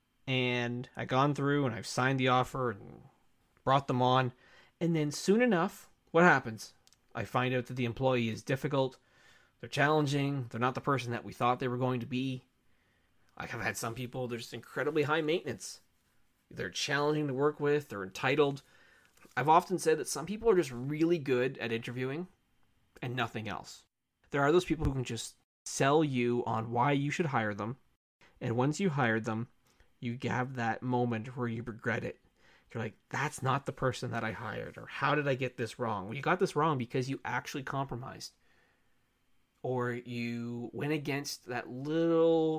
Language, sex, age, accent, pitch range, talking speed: English, male, 30-49, American, 120-145 Hz, 185 wpm